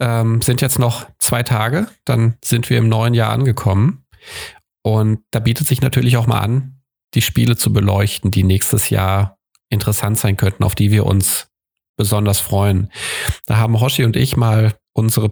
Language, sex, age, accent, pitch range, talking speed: German, male, 40-59, German, 105-130 Hz, 170 wpm